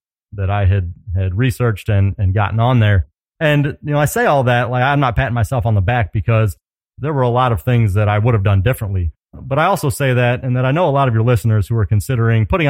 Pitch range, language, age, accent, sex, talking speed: 105-130 Hz, English, 30-49, American, male, 265 wpm